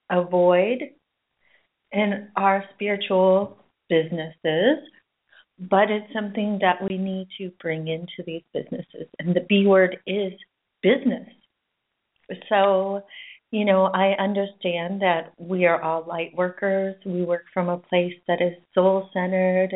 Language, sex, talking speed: English, female, 125 wpm